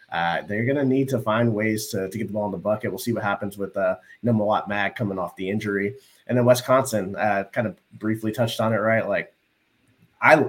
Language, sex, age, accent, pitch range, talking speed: English, male, 30-49, American, 100-125 Hz, 235 wpm